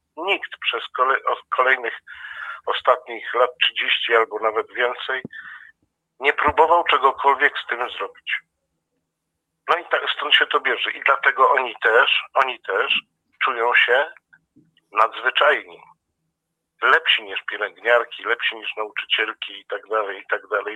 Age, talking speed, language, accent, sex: 50-69, 125 wpm, Polish, native, male